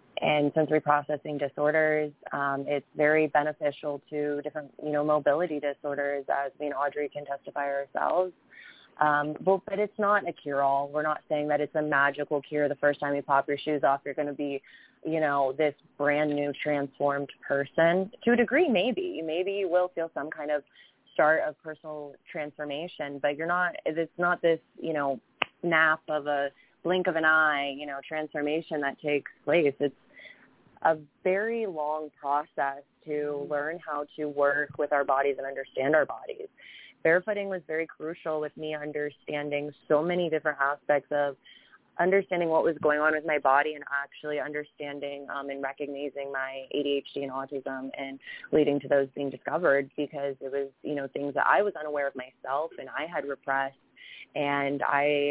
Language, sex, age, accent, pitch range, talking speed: English, female, 20-39, American, 140-155 Hz, 175 wpm